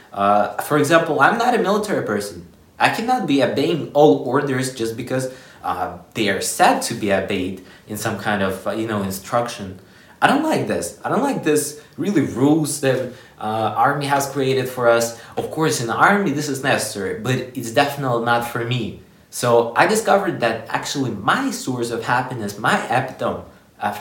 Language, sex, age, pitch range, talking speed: English, male, 20-39, 105-130 Hz, 185 wpm